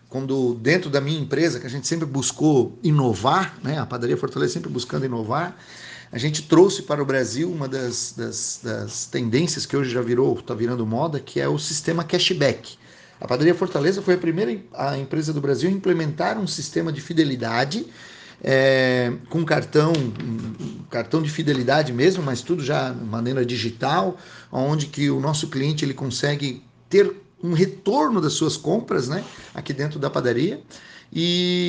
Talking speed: 170 wpm